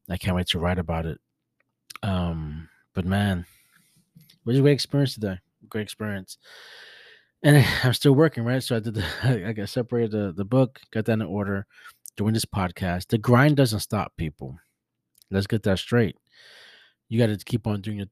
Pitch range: 95-120 Hz